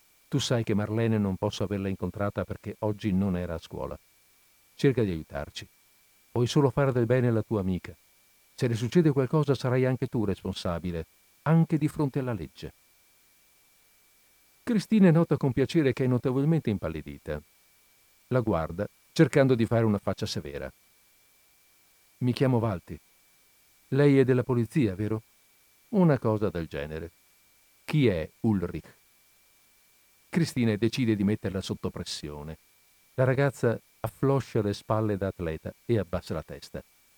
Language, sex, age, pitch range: Italian, male, 50-69, 95-130 Hz